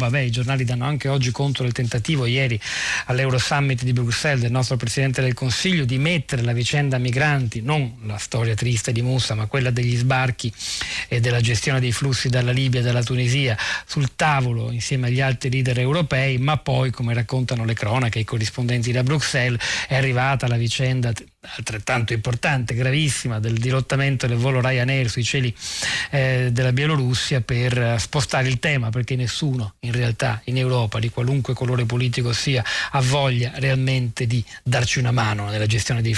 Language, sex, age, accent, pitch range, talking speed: Italian, male, 40-59, native, 120-135 Hz, 175 wpm